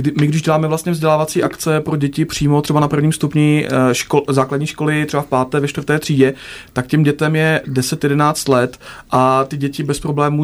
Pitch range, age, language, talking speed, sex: 145-165 Hz, 30-49, Czech, 190 wpm, male